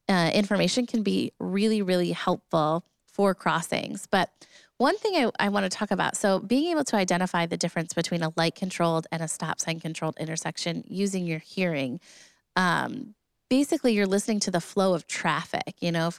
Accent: American